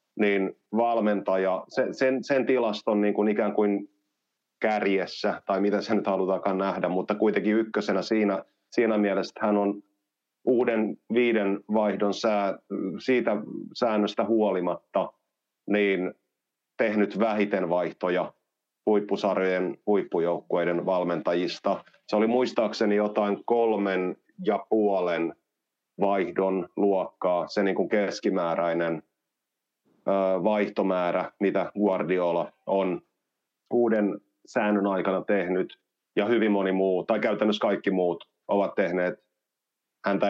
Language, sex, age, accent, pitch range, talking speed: Finnish, male, 30-49, native, 95-110 Hz, 100 wpm